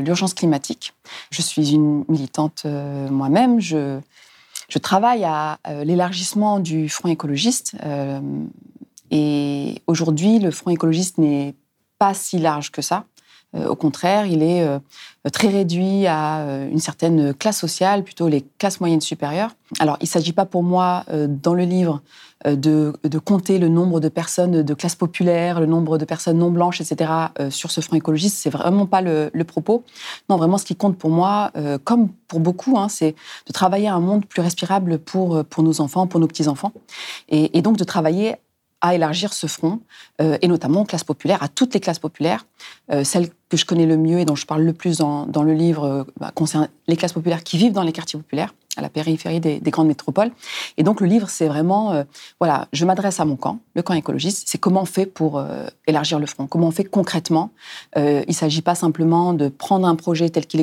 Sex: female